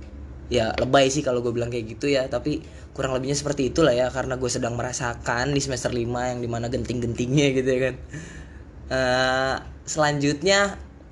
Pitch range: 110-145 Hz